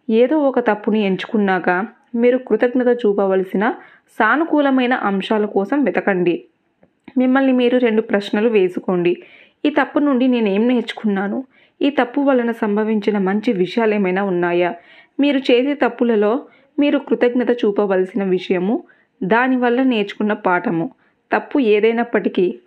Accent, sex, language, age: native, female, Telugu, 20-39